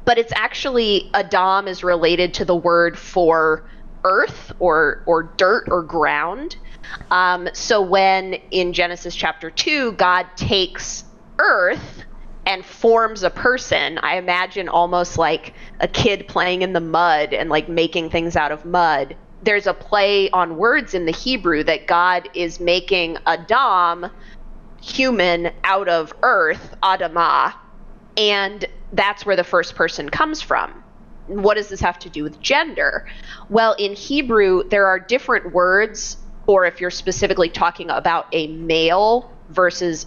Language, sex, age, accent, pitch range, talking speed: English, female, 20-39, American, 170-210 Hz, 145 wpm